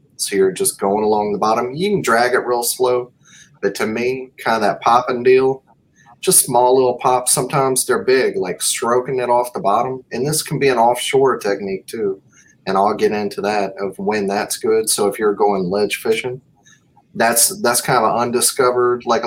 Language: English